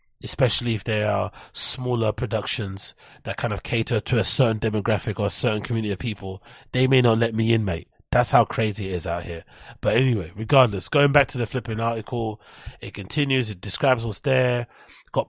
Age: 30-49